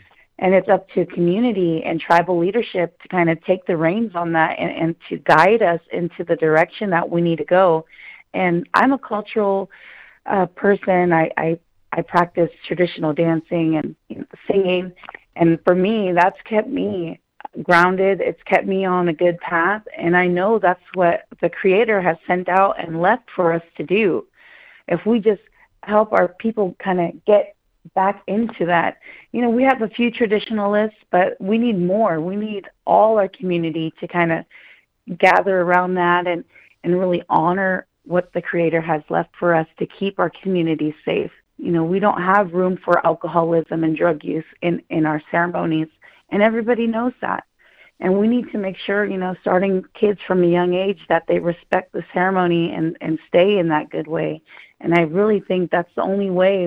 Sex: female